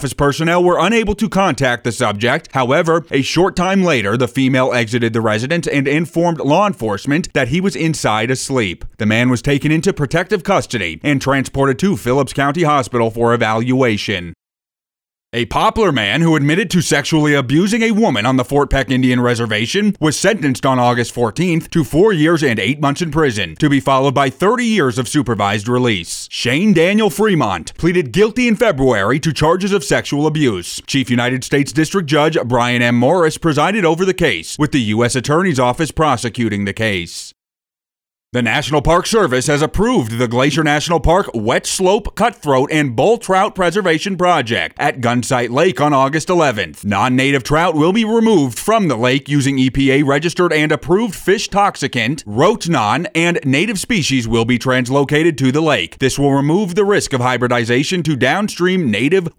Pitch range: 125-170 Hz